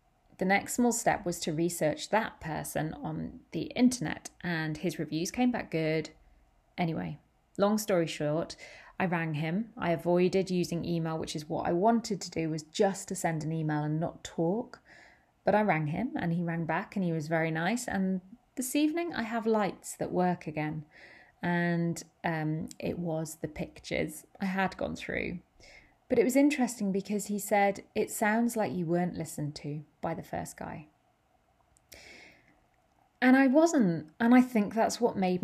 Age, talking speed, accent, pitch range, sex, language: 30-49, 175 wpm, British, 165-225 Hz, female, English